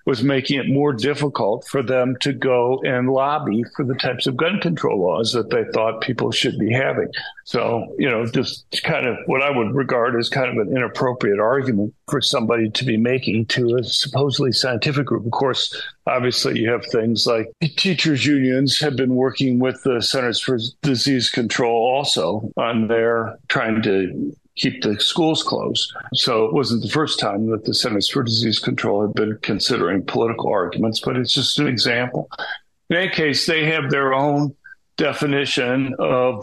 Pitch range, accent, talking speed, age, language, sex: 120-145 Hz, American, 180 wpm, 50-69, English, male